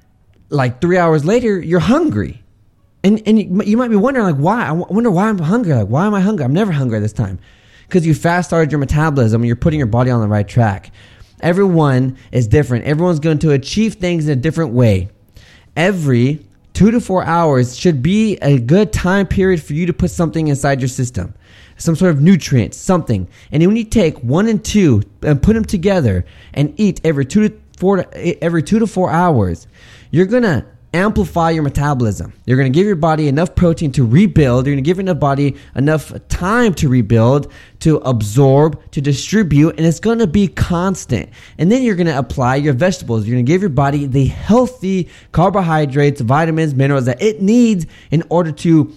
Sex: male